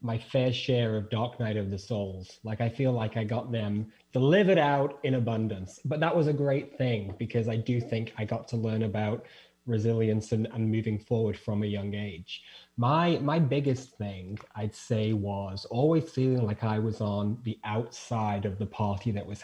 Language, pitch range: English, 105-125 Hz